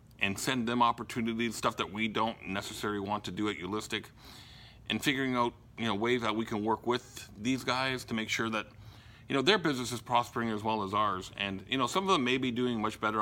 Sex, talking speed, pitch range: male, 235 wpm, 105-135 Hz